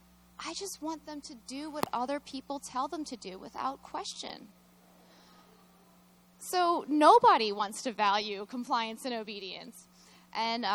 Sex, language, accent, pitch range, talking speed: female, English, American, 190-245 Hz, 135 wpm